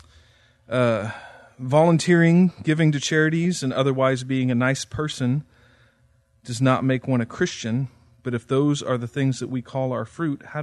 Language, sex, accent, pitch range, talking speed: English, male, American, 115-140 Hz, 165 wpm